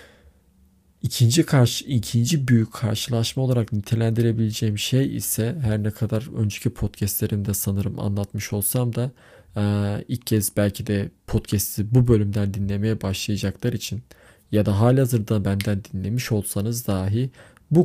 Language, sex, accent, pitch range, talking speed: Turkish, male, native, 100-120 Hz, 125 wpm